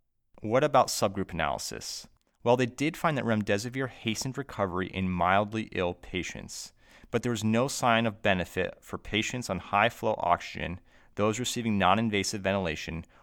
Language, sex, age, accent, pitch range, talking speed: English, male, 30-49, American, 95-120 Hz, 145 wpm